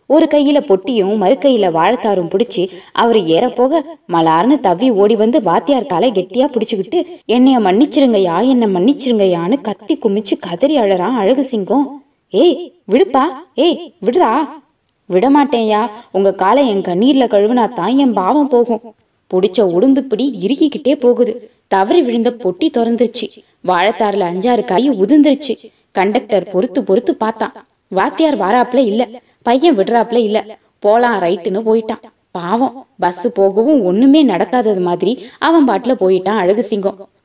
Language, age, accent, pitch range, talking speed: Tamil, 20-39, native, 195-260 Hz, 105 wpm